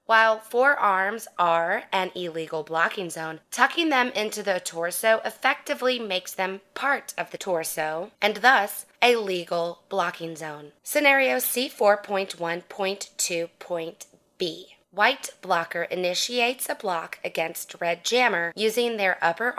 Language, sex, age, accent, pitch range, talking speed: English, female, 20-39, American, 170-215 Hz, 115 wpm